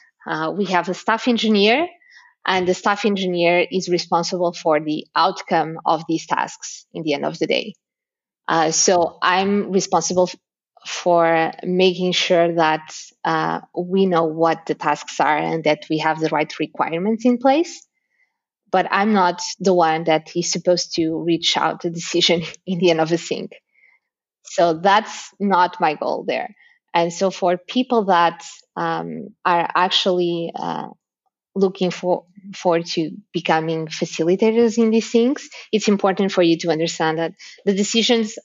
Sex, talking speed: female, 155 wpm